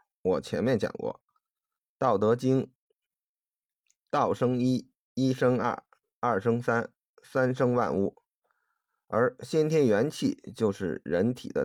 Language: Chinese